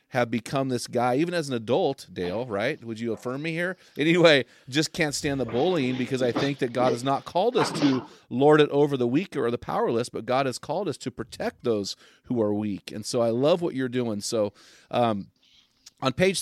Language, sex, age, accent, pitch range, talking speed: English, male, 30-49, American, 120-150 Hz, 225 wpm